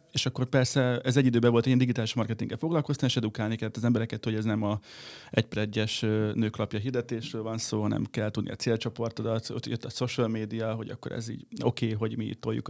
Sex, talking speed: male, 210 wpm